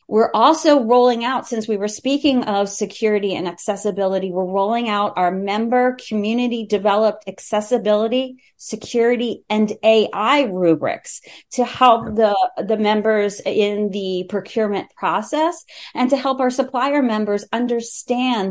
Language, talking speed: English, 125 wpm